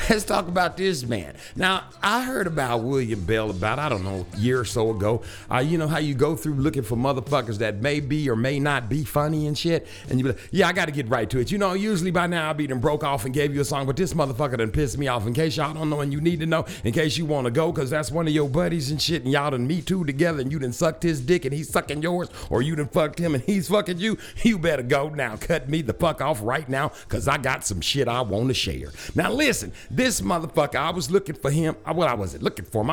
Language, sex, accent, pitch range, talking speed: English, male, American, 125-170 Hz, 280 wpm